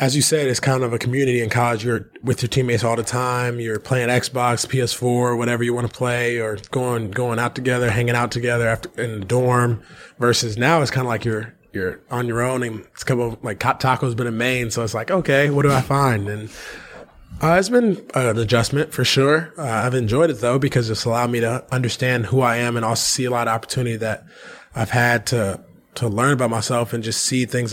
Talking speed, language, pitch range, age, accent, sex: 235 wpm, English, 115-135 Hz, 20-39, American, male